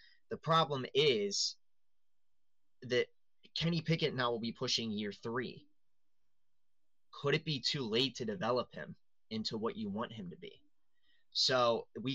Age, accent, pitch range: 20-39, American, 110-165 Hz